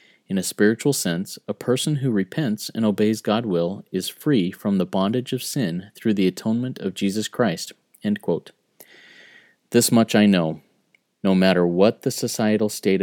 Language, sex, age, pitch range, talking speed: English, male, 30-49, 90-110 Hz, 160 wpm